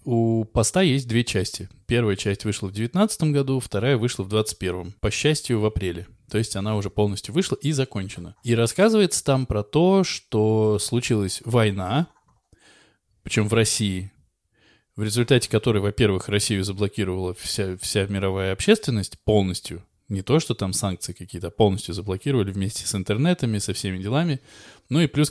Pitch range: 95-120 Hz